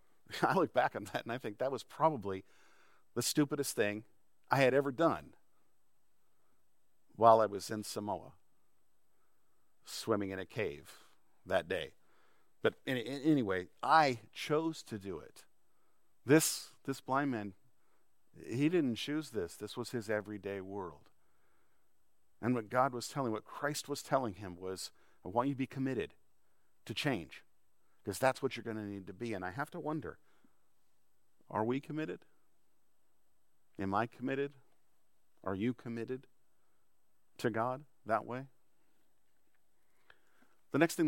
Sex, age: male, 50-69